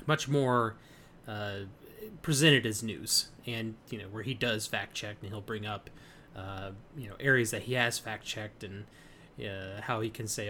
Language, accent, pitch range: English, American, 110-135 Hz